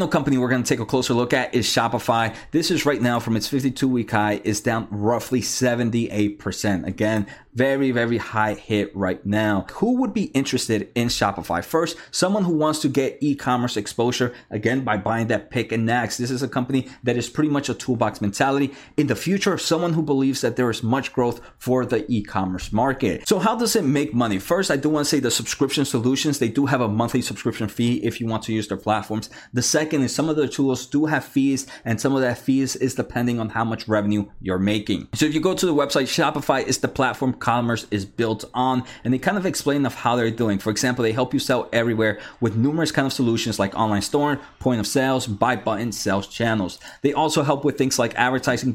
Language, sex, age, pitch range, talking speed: English, male, 30-49, 110-135 Hz, 225 wpm